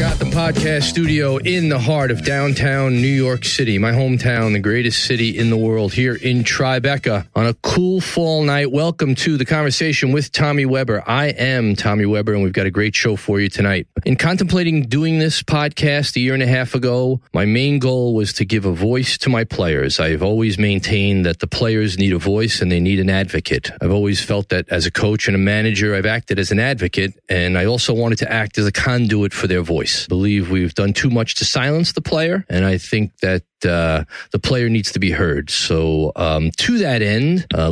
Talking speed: 220 wpm